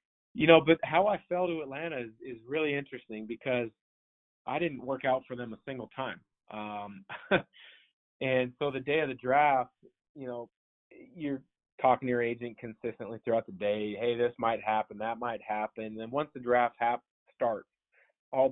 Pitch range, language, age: 115-130 Hz, English, 30-49